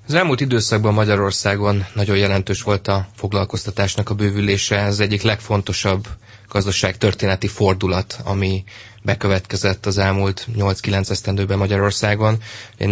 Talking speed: 110 wpm